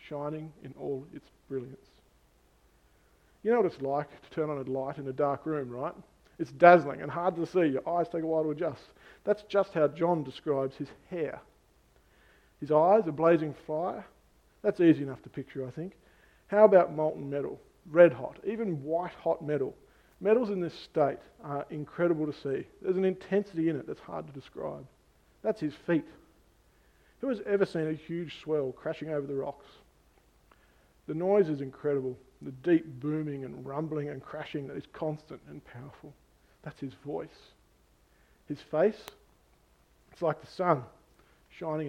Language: English